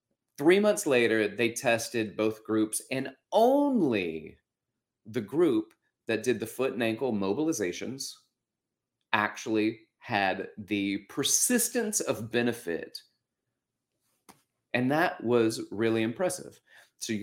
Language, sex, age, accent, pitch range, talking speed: English, male, 30-49, American, 110-145 Hz, 110 wpm